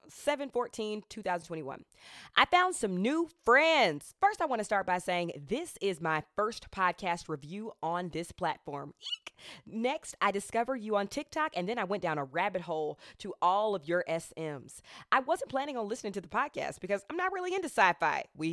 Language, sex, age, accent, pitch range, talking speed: English, female, 20-39, American, 170-220 Hz, 190 wpm